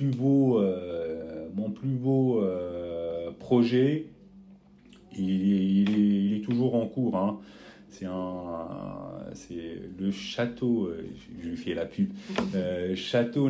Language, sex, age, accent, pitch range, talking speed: French, male, 40-59, French, 90-140 Hz, 135 wpm